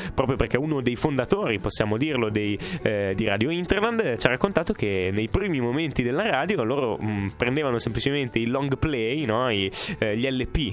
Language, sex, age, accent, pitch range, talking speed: Italian, male, 20-39, native, 110-140 Hz, 185 wpm